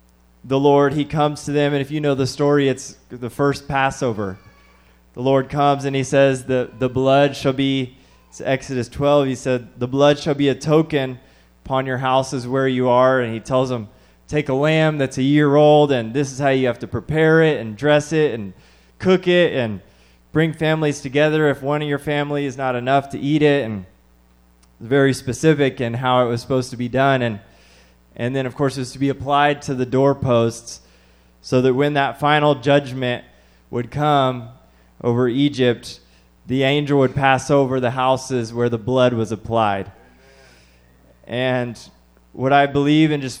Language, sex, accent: English, male, American